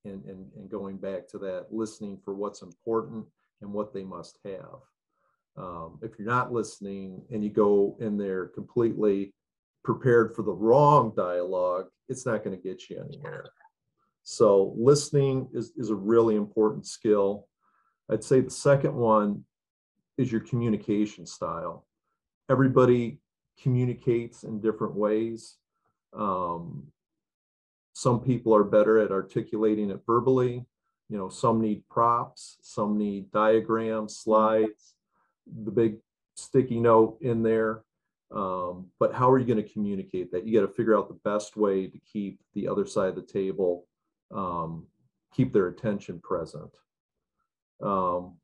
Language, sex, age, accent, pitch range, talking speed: English, male, 40-59, American, 100-120 Hz, 145 wpm